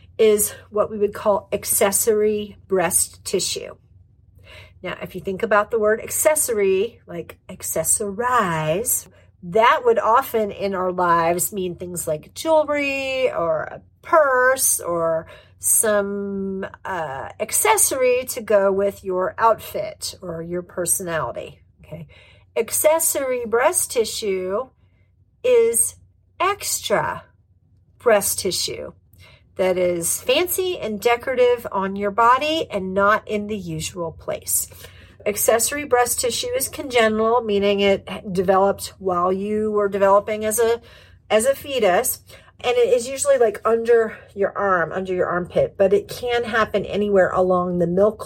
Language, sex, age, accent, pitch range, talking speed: English, female, 50-69, American, 185-250 Hz, 125 wpm